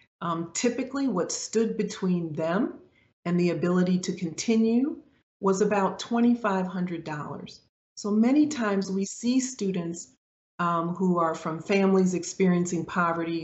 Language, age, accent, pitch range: English, 40-59, American, 165-195 Hz